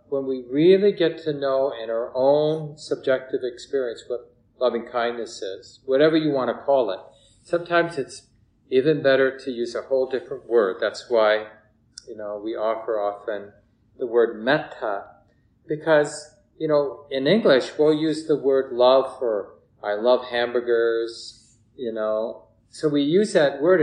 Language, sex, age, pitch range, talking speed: English, male, 40-59, 115-155 Hz, 155 wpm